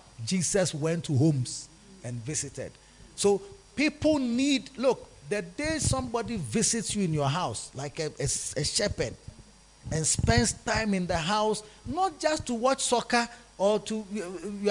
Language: English